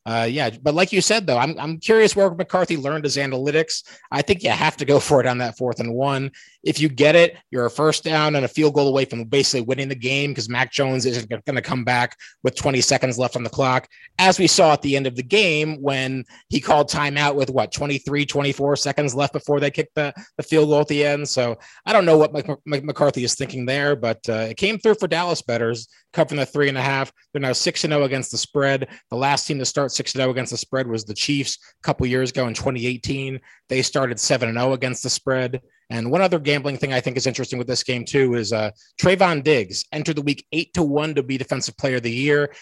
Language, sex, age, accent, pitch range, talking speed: English, male, 30-49, American, 125-150 Hz, 255 wpm